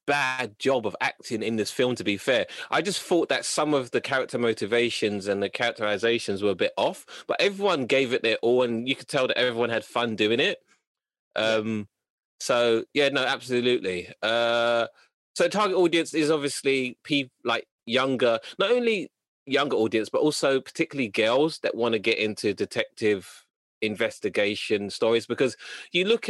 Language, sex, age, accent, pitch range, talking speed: English, male, 20-39, British, 115-145 Hz, 170 wpm